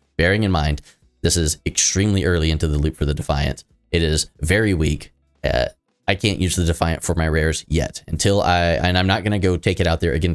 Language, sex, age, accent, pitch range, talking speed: English, male, 20-39, American, 80-95 Hz, 230 wpm